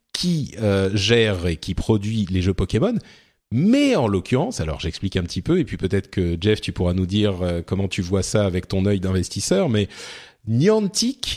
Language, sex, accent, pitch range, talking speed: French, male, French, 100-140 Hz, 195 wpm